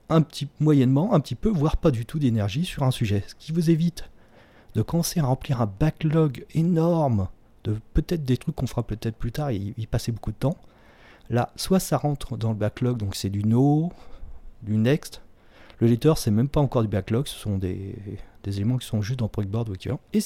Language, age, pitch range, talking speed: French, 40-59, 105-135 Hz, 215 wpm